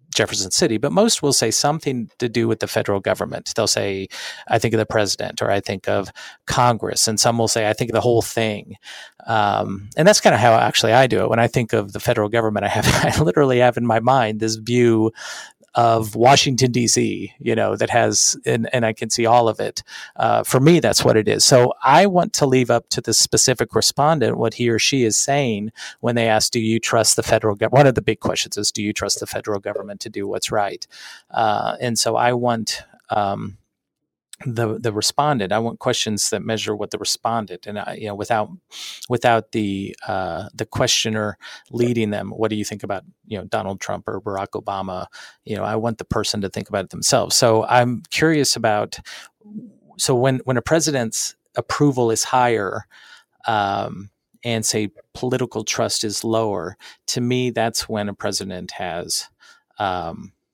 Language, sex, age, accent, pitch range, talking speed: English, male, 40-59, American, 105-120 Hz, 200 wpm